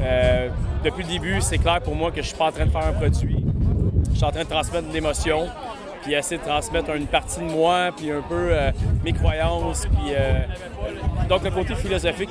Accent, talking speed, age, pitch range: Canadian, 235 wpm, 30-49, 145-180 Hz